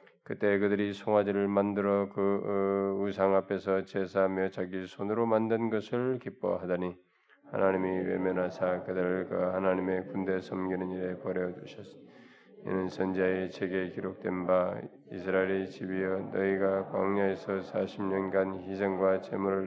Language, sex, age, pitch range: Korean, male, 20-39, 90-100 Hz